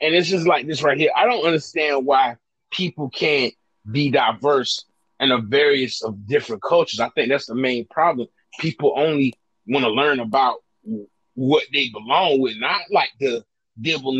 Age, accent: 30-49, American